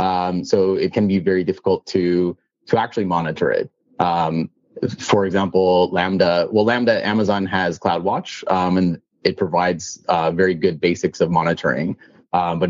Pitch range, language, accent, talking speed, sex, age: 85-95 Hz, English, American, 155 wpm, male, 30-49